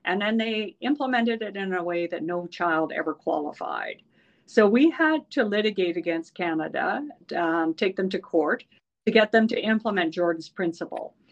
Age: 50-69